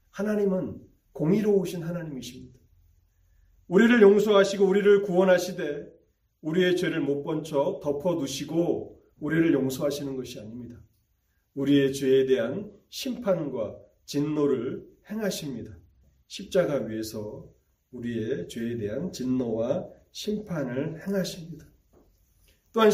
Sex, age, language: male, 40-59, Korean